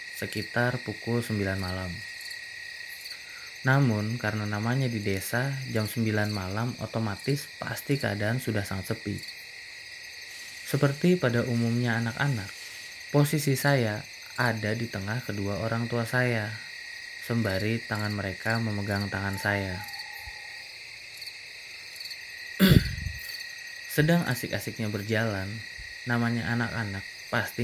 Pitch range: 110-165 Hz